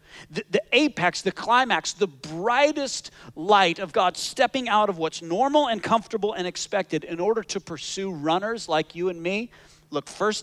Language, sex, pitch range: English, male, 145-200 Hz